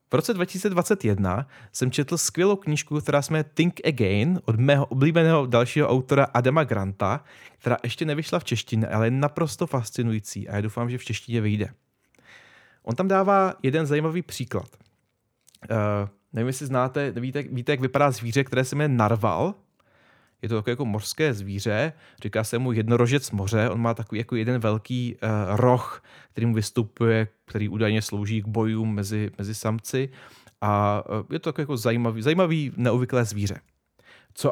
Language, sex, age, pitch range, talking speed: Czech, male, 30-49, 110-145 Hz, 155 wpm